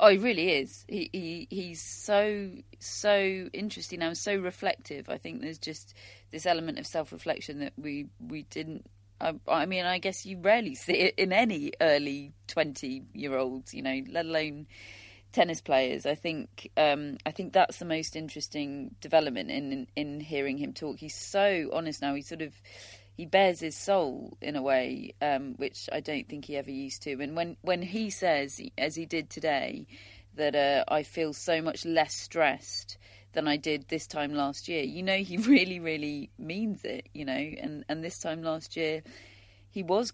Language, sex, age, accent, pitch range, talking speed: English, female, 30-49, British, 140-175 Hz, 190 wpm